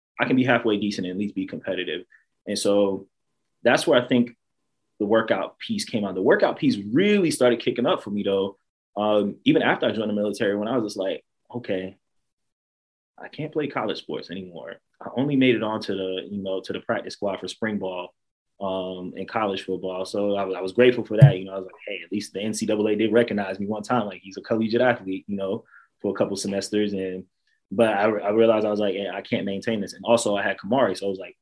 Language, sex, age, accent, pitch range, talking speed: English, male, 20-39, American, 95-110 Hz, 240 wpm